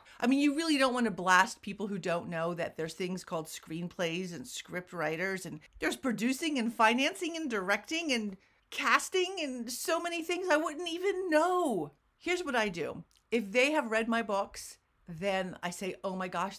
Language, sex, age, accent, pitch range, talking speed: English, female, 50-69, American, 185-255 Hz, 190 wpm